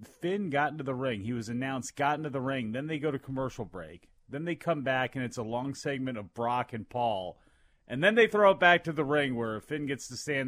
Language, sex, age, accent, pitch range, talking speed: English, male, 30-49, American, 115-150 Hz, 260 wpm